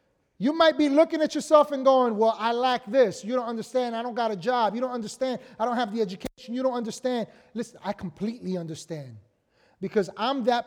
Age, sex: 30-49, male